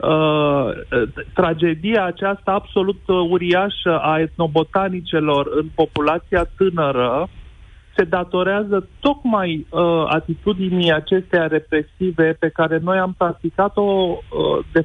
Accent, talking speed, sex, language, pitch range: native, 95 wpm, male, Romanian, 155-195 Hz